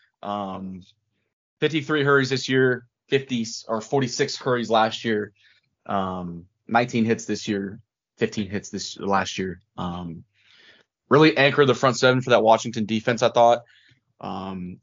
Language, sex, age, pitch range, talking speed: English, male, 20-39, 110-130 Hz, 140 wpm